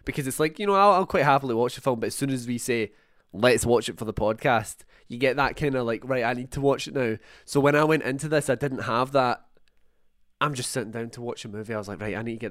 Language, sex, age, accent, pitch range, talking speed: English, male, 20-39, British, 115-135 Hz, 300 wpm